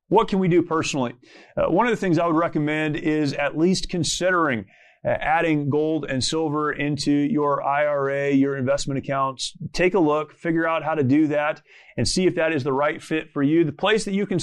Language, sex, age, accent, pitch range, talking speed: English, male, 30-49, American, 150-180 Hz, 210 wpm